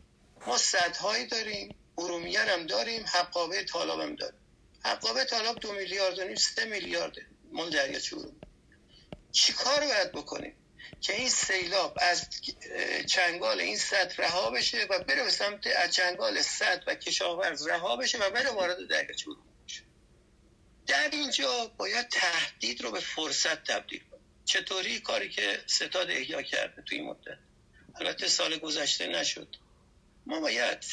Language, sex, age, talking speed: Persian, male, 50-69, 135 wpm